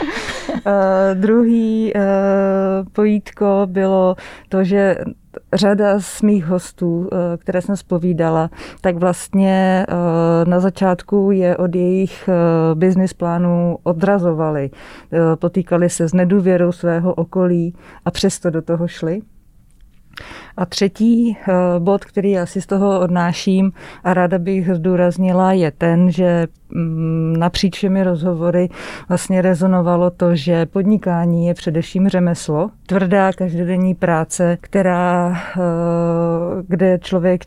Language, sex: English, female